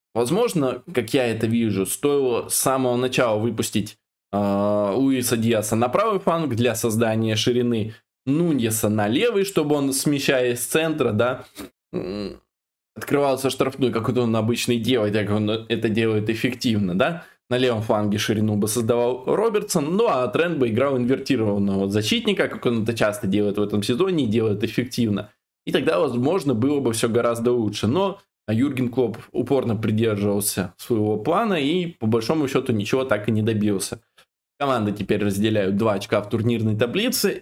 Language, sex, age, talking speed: Russian, male, 20-39, 155 wpm